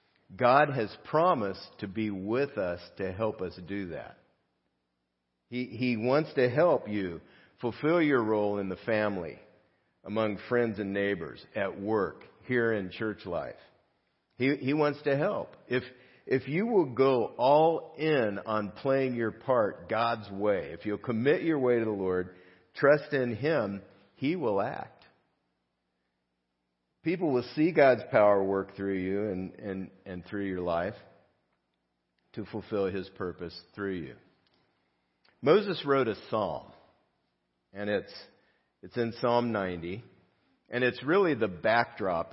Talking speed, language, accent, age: 145 wpm, English, American, 50-69